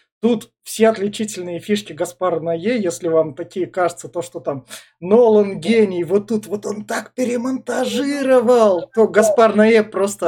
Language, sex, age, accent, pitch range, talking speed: Russian, male, 20-39, native, 155-200 Hz, 135 wpm